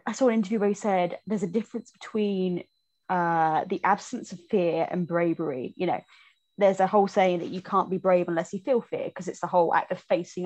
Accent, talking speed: British, 230 wpm